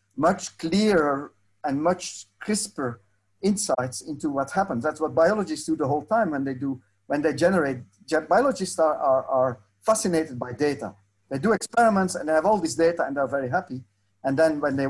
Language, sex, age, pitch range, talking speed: English, male, 50-69, 125-175 Hz, 185 wpm